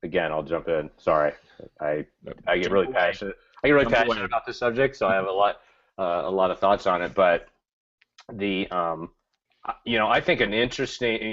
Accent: American